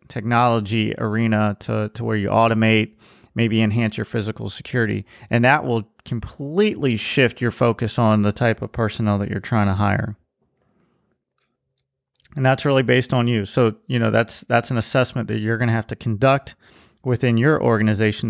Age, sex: 30-49, male